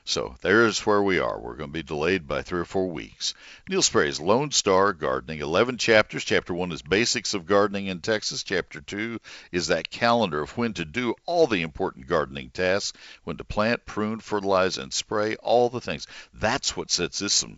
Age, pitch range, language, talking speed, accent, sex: 60-79, 85-115 Hz, English, 200 wpm, American, male